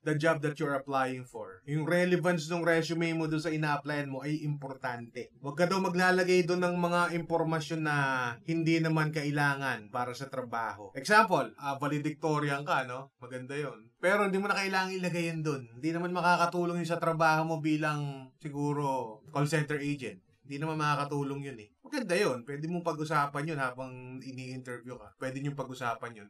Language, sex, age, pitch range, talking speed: English, male, 20-39, 135-165 Hz, 175 wpm